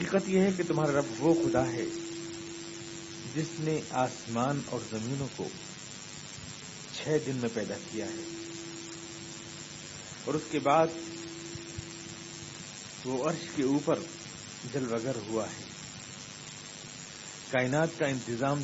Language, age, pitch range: Urdu, 50-69, 125-165 Hz